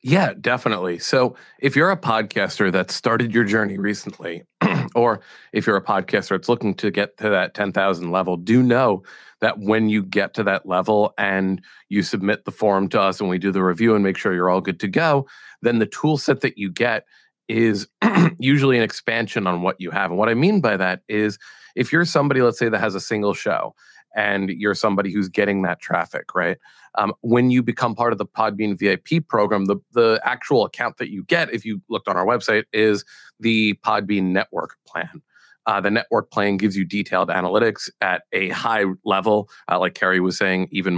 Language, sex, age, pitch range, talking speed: English, male, 30-49, 95-115 Hz, 205 wpm